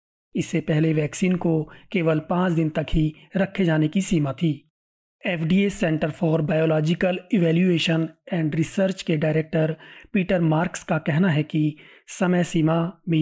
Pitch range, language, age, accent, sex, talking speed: 155-180 Hz, Hindi, 30-49, native, male, 155 wpm